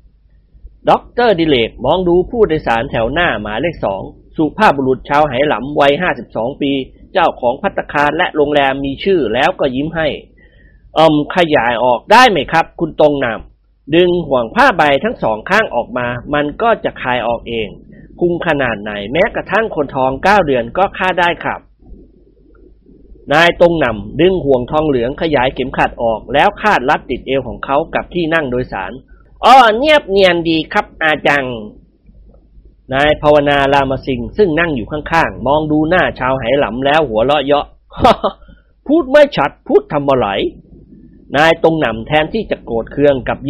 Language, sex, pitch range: Thai, male, 125-170 Hz